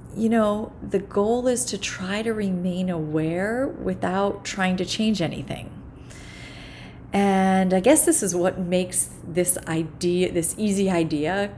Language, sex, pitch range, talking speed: English, female, 165-210 Hz, 140 wpm